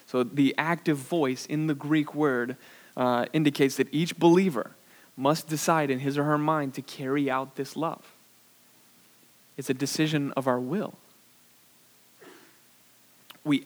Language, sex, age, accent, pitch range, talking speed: English, male, 20-39, American, 115-140 Hz, 140 wpm